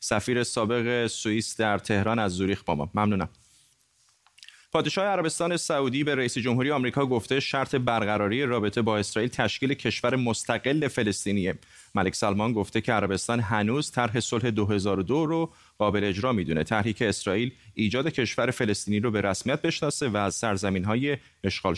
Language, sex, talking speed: Persian, male, 150 wpm